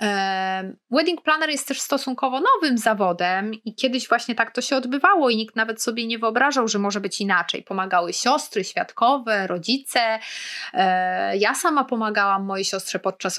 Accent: native